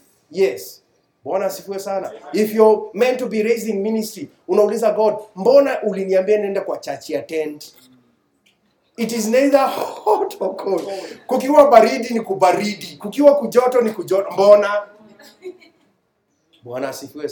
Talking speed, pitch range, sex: 115 wpm, 140-230 Hz, male